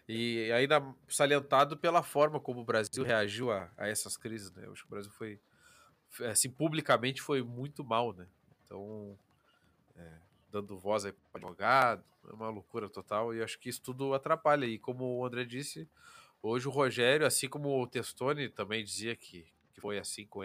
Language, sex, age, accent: Portuguese, male, 20-39, Brazilian